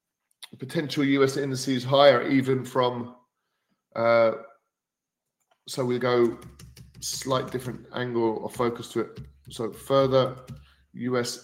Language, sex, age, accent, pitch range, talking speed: English, male, 40-59, British, 110-130 Hz, 105 wpm